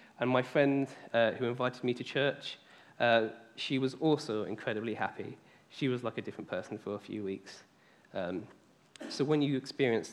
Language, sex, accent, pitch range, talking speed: English, male, British, 110-135 Hz, 180 wpm